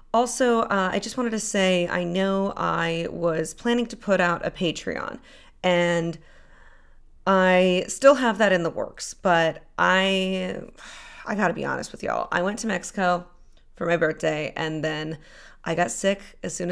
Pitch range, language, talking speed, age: 170-225 Hz, English, 170 wpm, 30-49